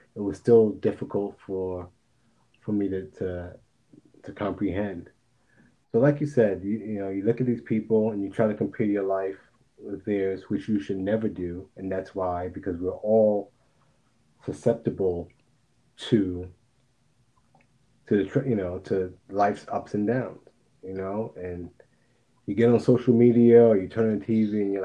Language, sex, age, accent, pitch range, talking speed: English, male, 30-49, American, 95-115 Hz, 165 wpm